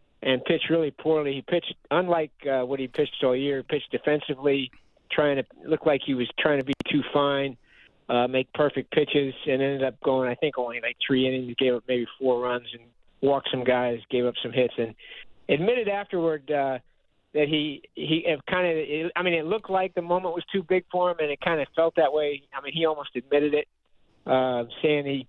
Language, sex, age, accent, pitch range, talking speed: English, male, 50-69, American, 130-165 Hz, 215 wpm